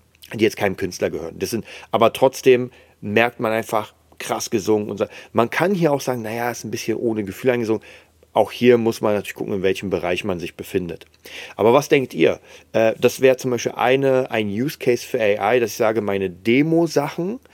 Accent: German